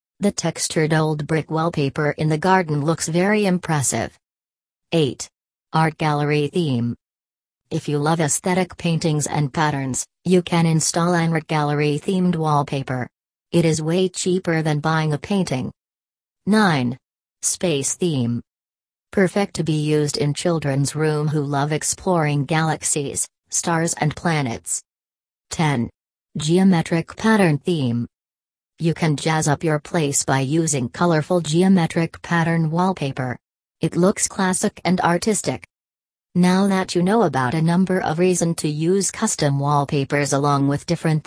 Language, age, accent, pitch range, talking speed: English, 40-59, American, 140-175 Hz, 130 wpm